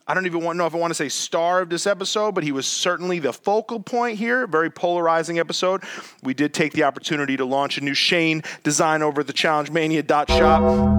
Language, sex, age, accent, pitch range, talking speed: English, male, 30-49, American, 130-170 Hz, 220 wpm